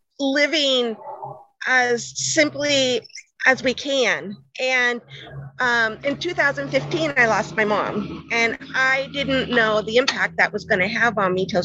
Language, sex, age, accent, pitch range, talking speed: English, female, 40-59, American, 215-280 Hz, 145 wpm